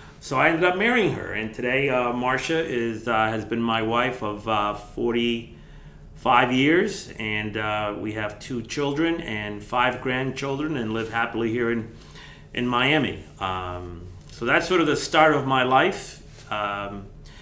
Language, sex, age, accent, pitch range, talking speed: English, male, 40-59, American, 110-125 Hz, 160 wpm